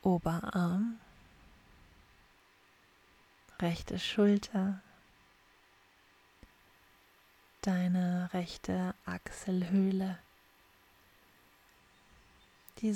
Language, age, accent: German, 30-49, German